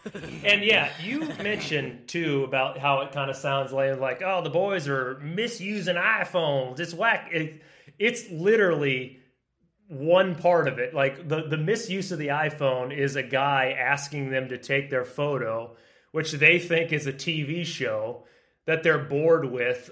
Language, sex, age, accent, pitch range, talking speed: English, male, 30-49, American, 130-160 Hz, 160 wpm